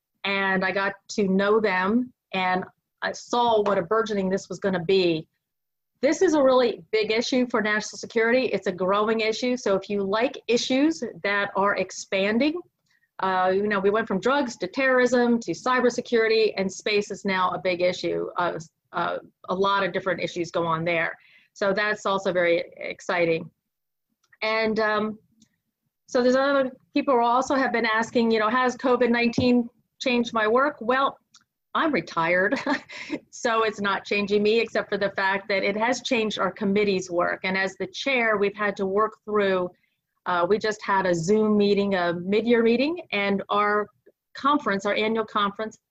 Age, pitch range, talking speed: 30-49, 190-235 Hz, 175 wpm